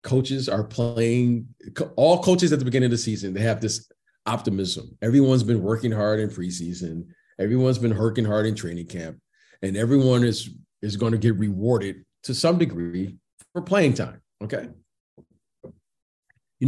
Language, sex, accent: English, male, American